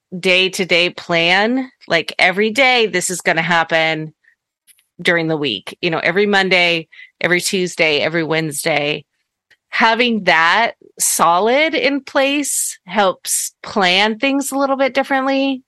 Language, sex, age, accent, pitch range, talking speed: English, female, 30-49, American, 165-230 Hz, 125 wpm